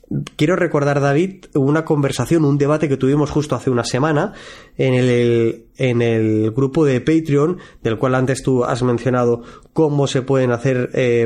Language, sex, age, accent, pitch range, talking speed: Spanish, male, 20-39, Spanish, 120-150 Hz, 165 wpm